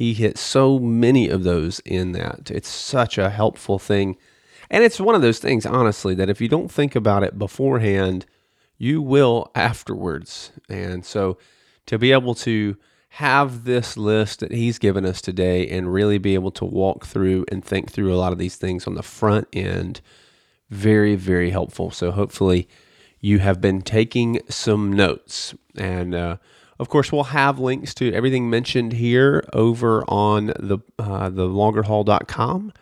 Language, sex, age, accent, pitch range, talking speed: English, male, 30-49, American, 95-115 Hz, 165 wpm